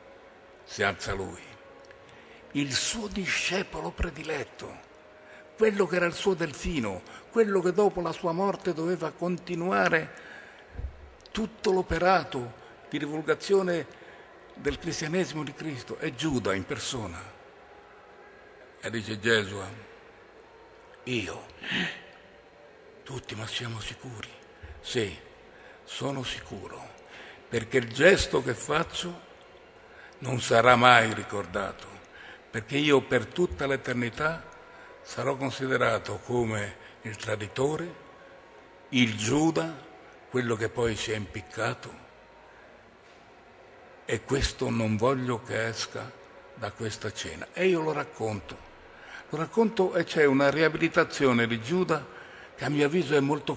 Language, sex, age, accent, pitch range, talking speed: Italian, male, 60-79, native, 115-170 Hz, 110 wpm